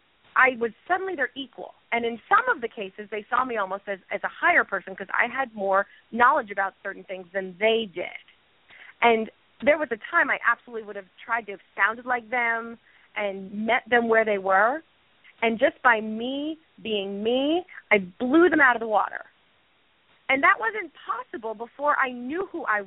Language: English